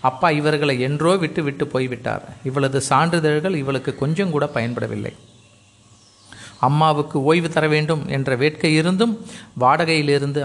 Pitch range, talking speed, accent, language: 125-165 Hz, 115 wpm, native, Tamil